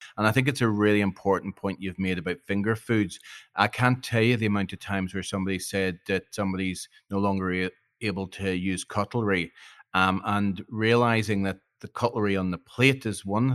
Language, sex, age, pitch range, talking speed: English, male, 40-59, 95-120 Hz, 190 wpm